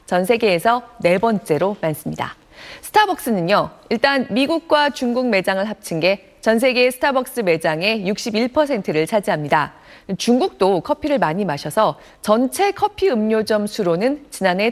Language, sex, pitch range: Korean, female, 180-270 Hz